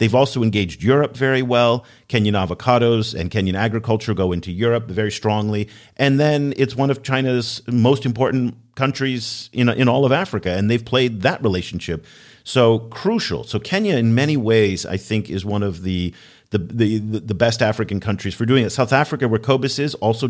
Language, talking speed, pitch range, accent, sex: English, 185 wpm, 100-130 Hz, American, male